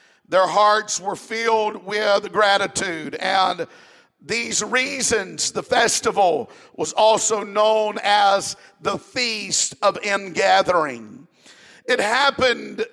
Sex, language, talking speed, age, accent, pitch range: male, English, 100 wpm, 50-69, American, 200-230 Hz